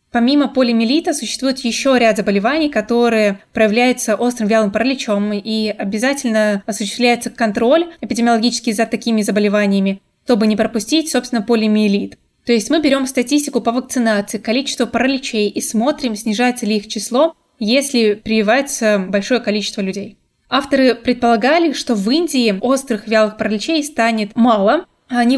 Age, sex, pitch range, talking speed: 20-39, female, 215-255 Hz, 130 wpm